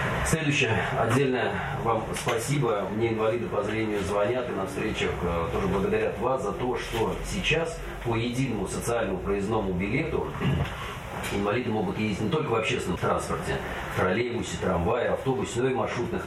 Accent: native